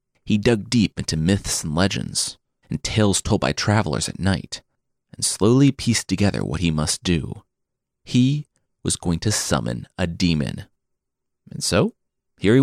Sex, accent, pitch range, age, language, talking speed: male, American, 90-125 Hz, 30-49, English, 155 wpm